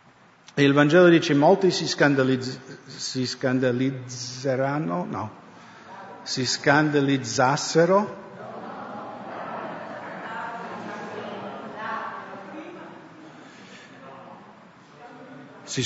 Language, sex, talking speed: English, male, 40 wpm